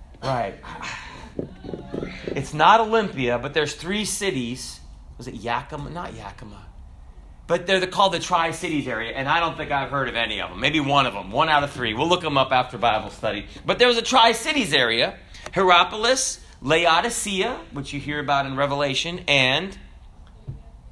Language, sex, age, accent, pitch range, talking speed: English, male, 30-49, American, 125-180 Hz, 175 wpm